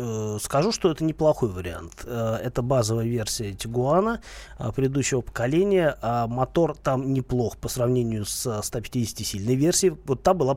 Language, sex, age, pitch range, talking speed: Russian, male, 30-49, 115-150 Hz, 130 wpm